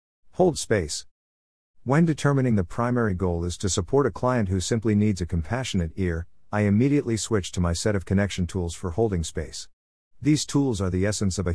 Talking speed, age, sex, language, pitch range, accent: 190 wpm, 50-69, male, English, 90-115 Hz, American